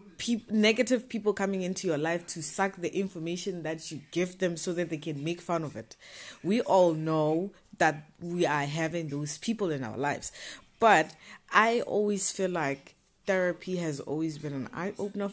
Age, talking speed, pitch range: 20-39, 175 wpm, 150-205 Hz